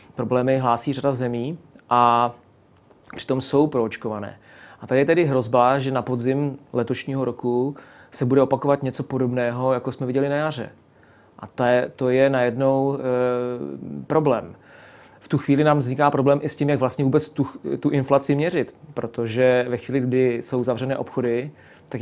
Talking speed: 165 wpm